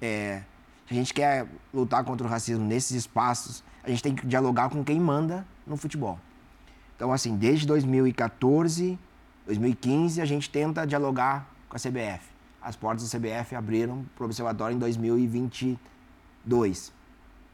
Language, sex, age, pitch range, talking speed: Portuguese, male, 20-39, 120-145 Hz, 145 wpm